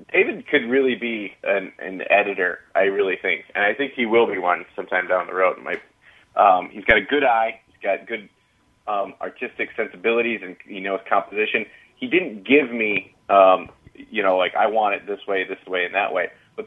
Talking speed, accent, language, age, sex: 210 wpm, American, English, 20-39, male